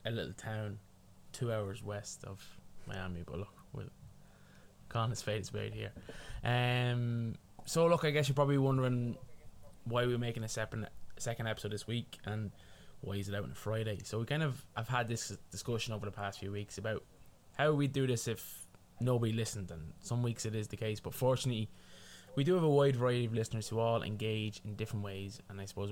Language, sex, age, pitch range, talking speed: English, male, 20-39, 100-120 Hz, 200 wpm